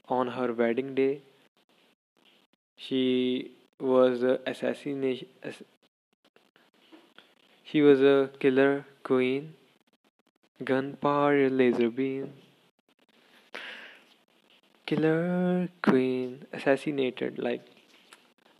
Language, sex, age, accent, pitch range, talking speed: English, male, 20-39, Indian, 125-140 Hz, 65 wpm